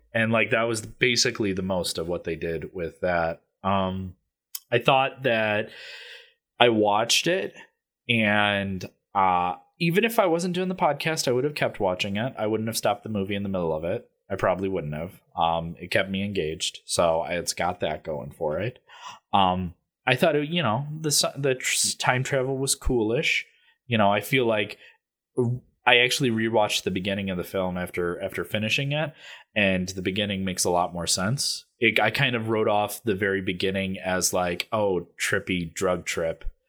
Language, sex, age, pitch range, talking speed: English, male, 20-39, 90-125 Hz, 185 wpm